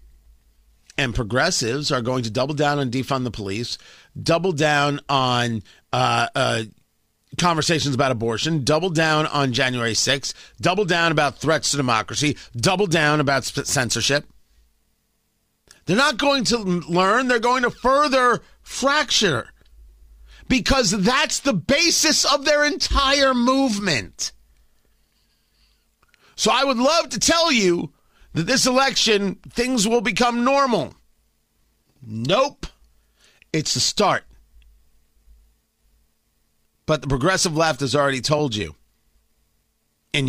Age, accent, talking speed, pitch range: 40-59, American, 120 wpm, 115-195 Hz